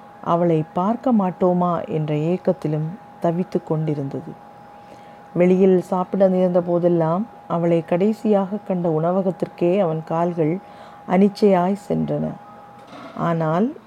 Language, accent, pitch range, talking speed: Tamil, native, 165-205 Hz, 85 wpm